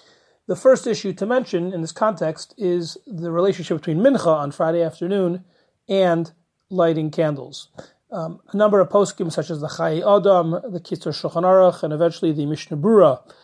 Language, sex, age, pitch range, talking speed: English, male, 30-49, 160-195 Hz, 165 wpm